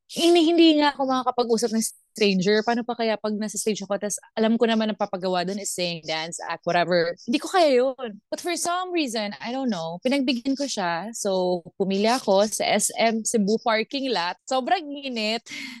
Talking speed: 185 wpm